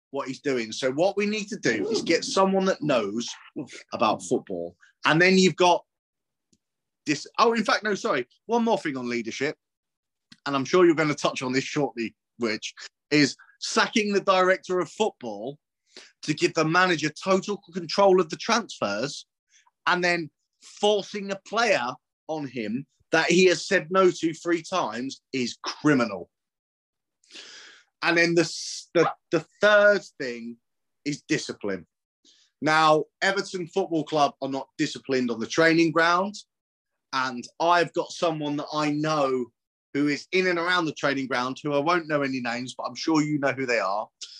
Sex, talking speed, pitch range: male, 165 wpm, 135-185 Hz